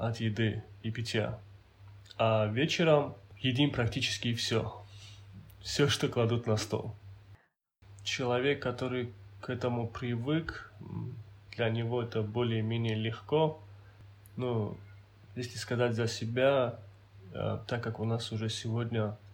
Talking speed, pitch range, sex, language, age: 110 wpm, 105-120 Hz, male, Russian, 20-39